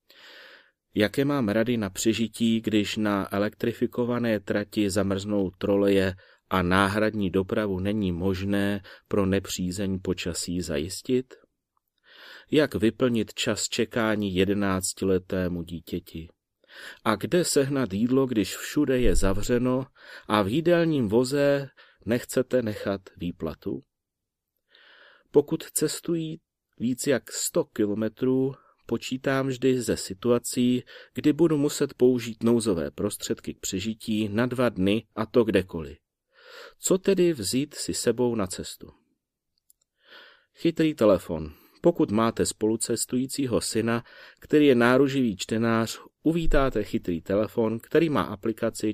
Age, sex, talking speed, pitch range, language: 30-49, male, 110 wpm, 95-130 Hz, Czech